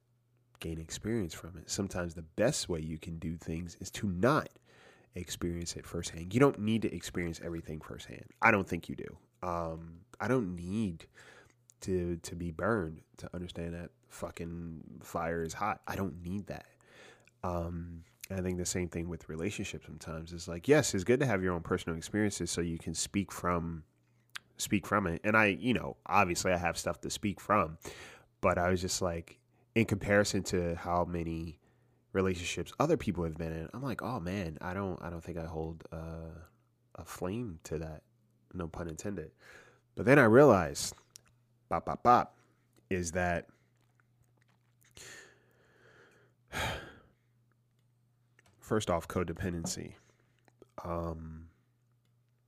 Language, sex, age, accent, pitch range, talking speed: English, male, 20-39, American, 85-110 Hz, 155 wpm